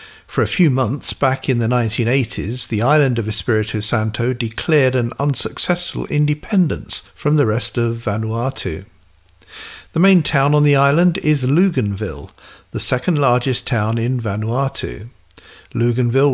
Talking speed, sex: 135 wpm, male